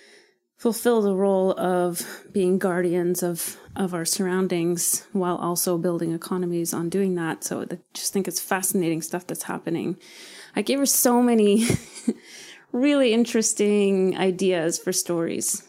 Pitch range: 175-195 Hz